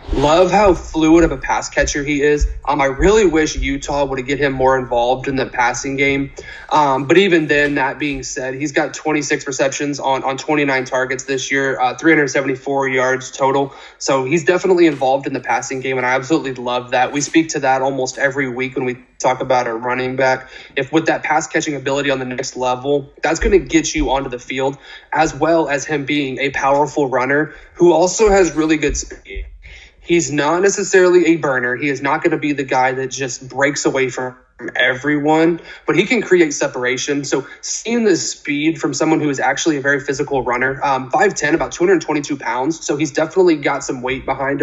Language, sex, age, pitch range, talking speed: English, male, 20-39, 130-155 Hz, 205 wpm